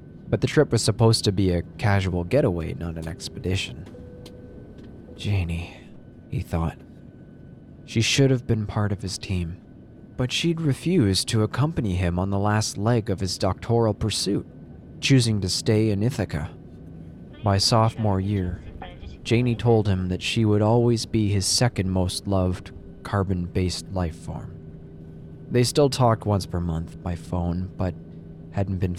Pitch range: 90-115 Hz